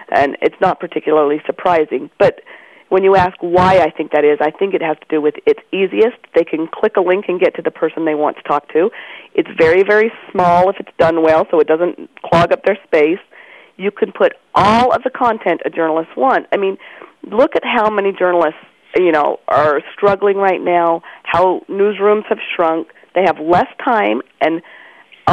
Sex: female